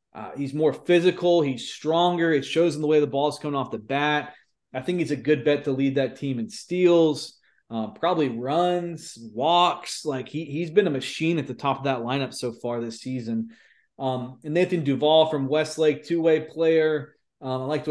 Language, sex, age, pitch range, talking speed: English, male, 30-49, 130-155 Hz, 210 wpm